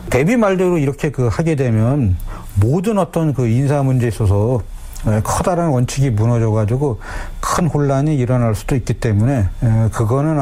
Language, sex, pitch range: Korean, male, 110-145 Hz